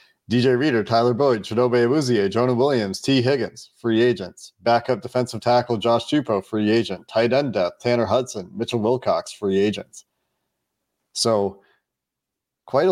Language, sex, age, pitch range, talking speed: English, male, 30-49, 105-125 Hz, 140 wpm